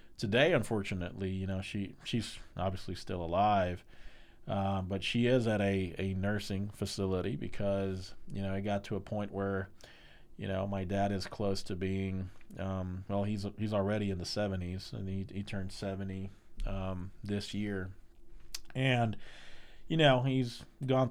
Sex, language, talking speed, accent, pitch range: male, English, 160 wpm, American, 90-100 Hz